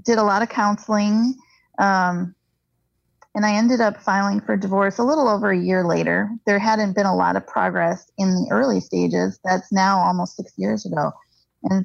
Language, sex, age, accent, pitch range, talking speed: English, female, 30-49, American, 180-215 Hz, 185 wpm